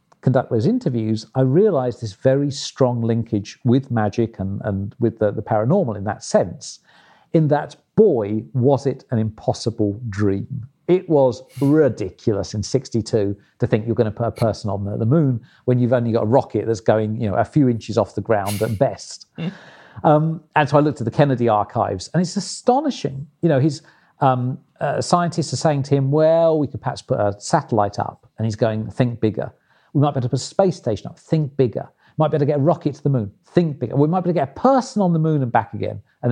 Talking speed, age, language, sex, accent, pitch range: 225 wpm, 50-69, English, male, British, 115-150 Hz